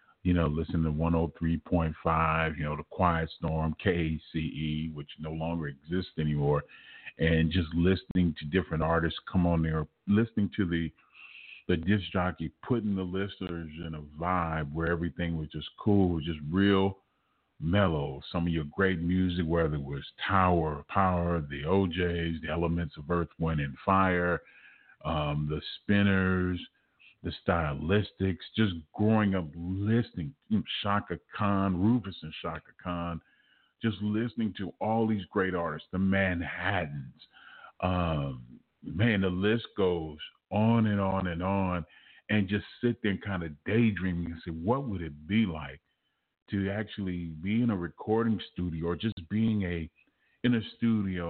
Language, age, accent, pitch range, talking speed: English, 40-59, American, 80-100 Hz, 150 wpm